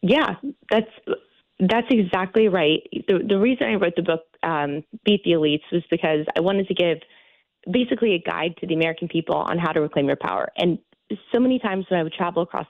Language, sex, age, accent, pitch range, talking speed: English, female, 20-39, American, 165-210 Hz, 210 wpm